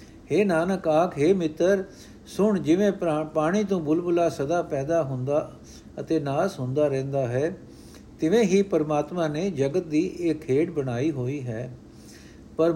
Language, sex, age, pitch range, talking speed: Punjabi, male, 60-79, 155-210 Hz, 140 wpm